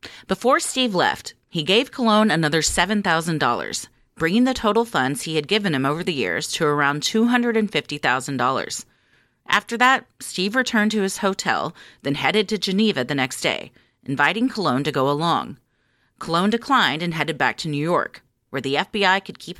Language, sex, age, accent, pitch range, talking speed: English, female, 30-49, American, 145-225 Hz, 165 wpm